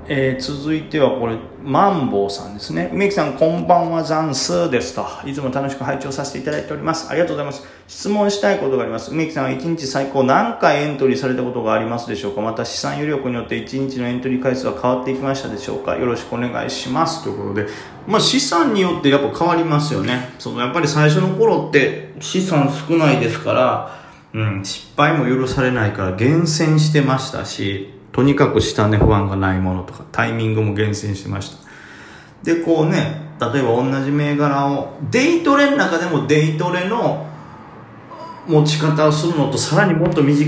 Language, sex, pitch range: Japanese, male, 110-155 Hz